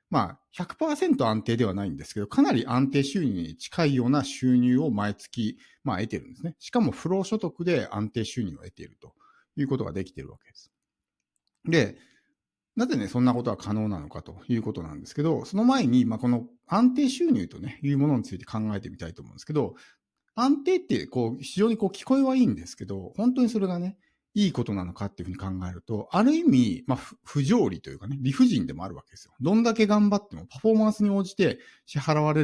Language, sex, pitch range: Japanese, male, 110-185 Hz